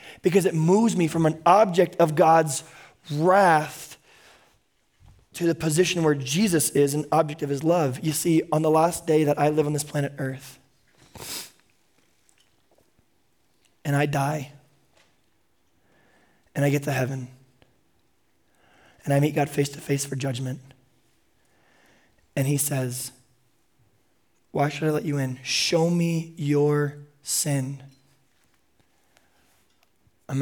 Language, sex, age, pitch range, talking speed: English, male, 20-39, 130-155 Hz, 130 wpm